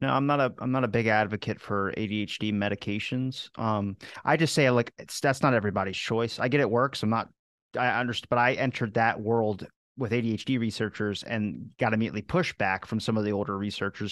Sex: male